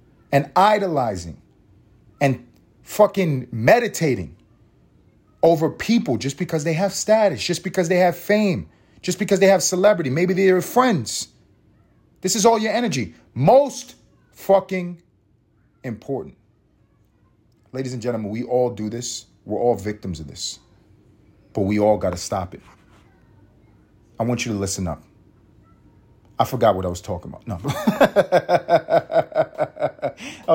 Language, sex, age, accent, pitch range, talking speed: English, male, 30-49, American, 105-165 Hz, 130 wpm